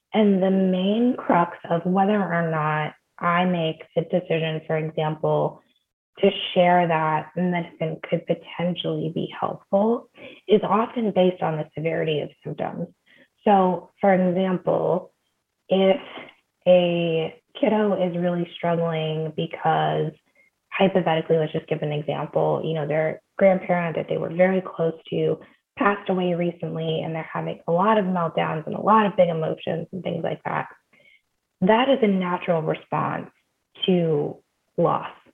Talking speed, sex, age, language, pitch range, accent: 140 wpm, female, 20-39, English, 160-190 Hz, American